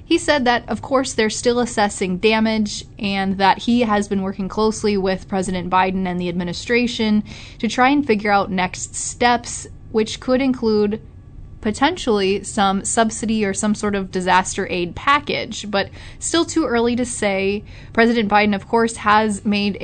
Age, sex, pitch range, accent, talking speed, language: 20-39, female, 190-230 Hz, American, 165 wpm, English